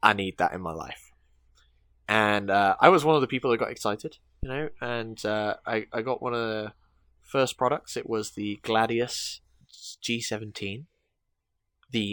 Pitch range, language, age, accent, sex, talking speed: 100-120 Hz, English, 10-29, British, male, 175 wpm